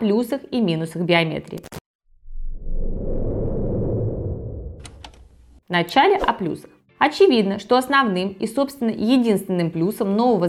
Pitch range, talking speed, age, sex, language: 175-235 Hz, 85 wpm, 20-39, female, Russian